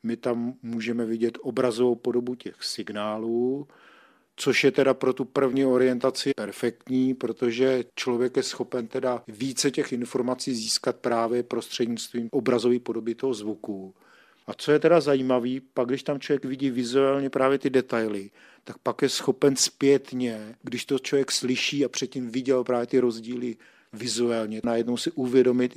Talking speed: 150 wpm